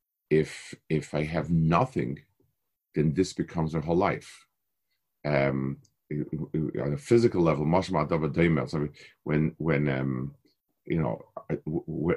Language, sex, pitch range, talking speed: English, male, 75-90 Hz, 105 wpm